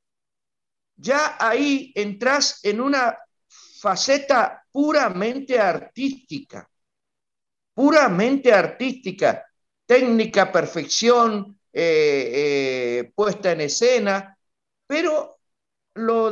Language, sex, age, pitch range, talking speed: Spanish, male, 60-79, 165-245 Hz, 75 wpm